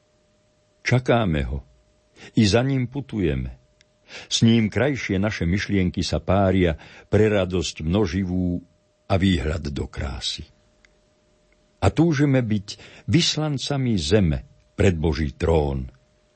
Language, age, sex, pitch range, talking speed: Slovak, 60-79, male, 85-110 Hz, 105 wpm